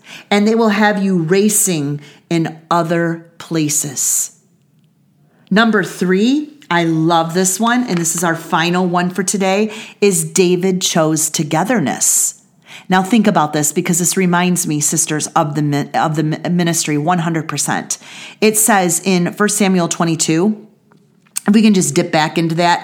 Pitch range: 170-215 Hz